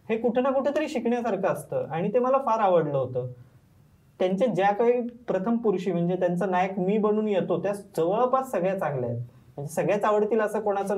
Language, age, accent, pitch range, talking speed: Marathi, 20-39, native, 165-230 Hz, 180 wpm